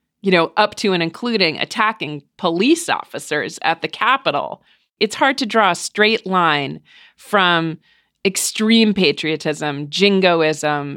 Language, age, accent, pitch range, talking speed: English, 40-59, American, 170-210 Hz, 125 wpm